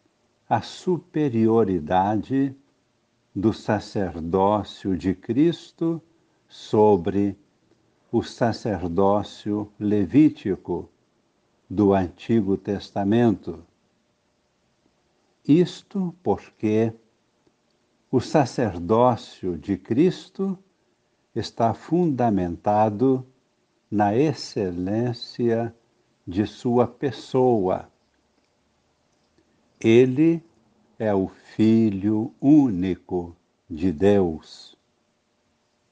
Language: Portuguese